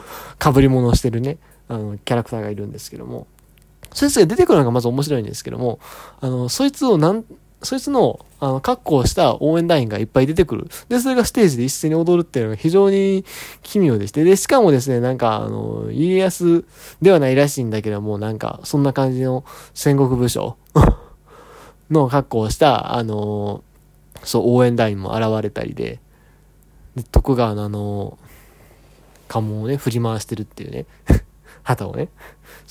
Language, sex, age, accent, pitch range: Japanese, male, 20-39, native, 115-175 Hz